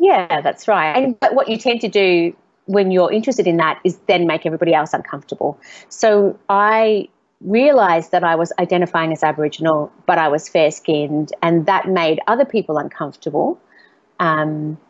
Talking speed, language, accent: 165 wpm, English, Australian